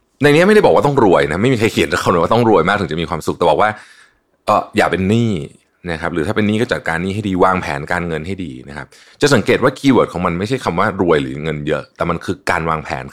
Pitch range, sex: 75-105 Hz, male